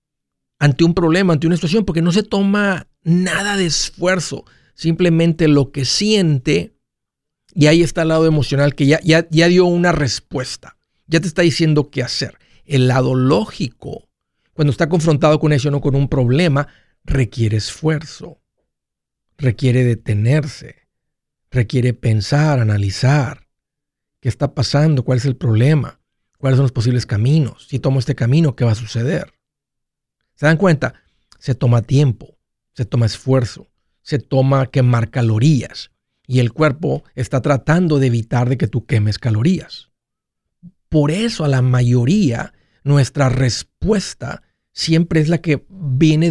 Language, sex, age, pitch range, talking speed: Spanish, male, 50-69, 125-165 Hz, 145 wpm